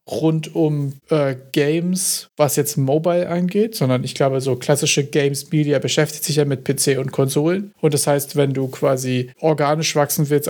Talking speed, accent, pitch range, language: 170 wpm, German, 135-160 Hz, German